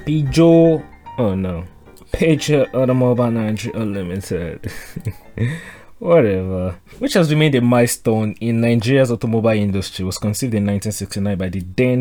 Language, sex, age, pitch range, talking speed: English, male, 20-39, 95-115 Hz, 110 wpm